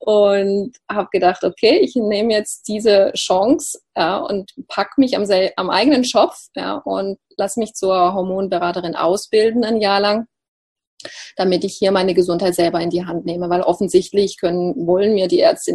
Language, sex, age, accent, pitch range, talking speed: German, female, 30-49, German, 185-245 Hz, 160 wpm